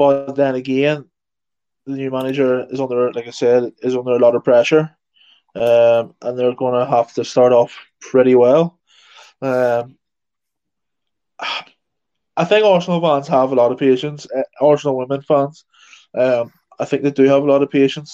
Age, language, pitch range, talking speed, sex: 20-39, English, 125-150 Hz, 170 wpm, male